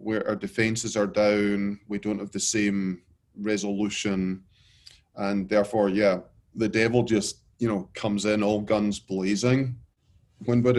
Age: 30-49